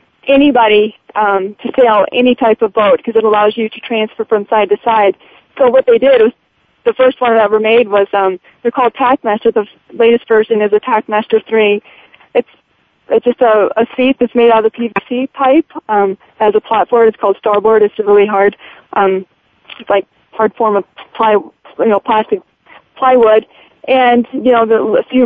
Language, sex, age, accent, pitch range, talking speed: English, female, 40-59, American, 215-250 Hz, 195 wpm